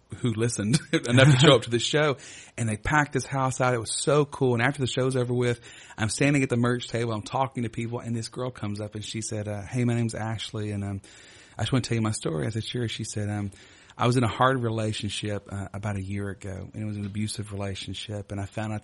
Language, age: English, 30-49